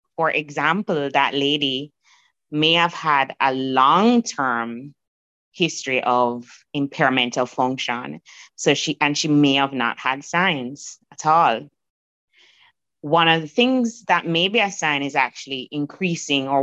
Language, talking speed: English, 125 wpm